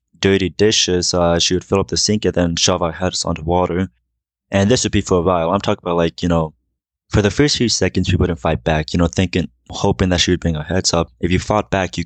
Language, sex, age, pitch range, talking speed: English, male, 20-39, 85-100 Hz, 270 wpm